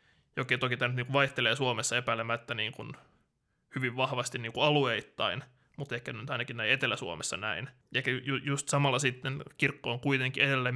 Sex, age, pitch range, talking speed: male, 20-39, 125-140 Hz, 165 wpm